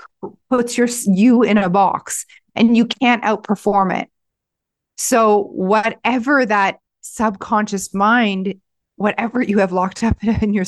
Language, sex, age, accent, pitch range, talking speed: English, female, 40-59, American, 195-235 Hz, 130 wpm